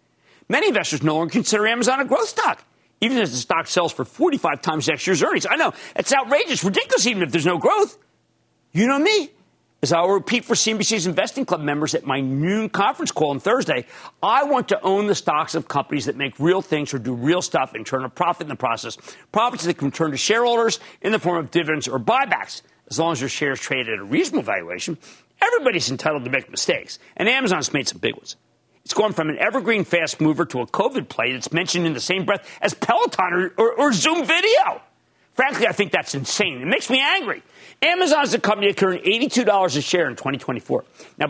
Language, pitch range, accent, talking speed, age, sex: English, 145-220 Hz, American, 220 wpm, 50-69, male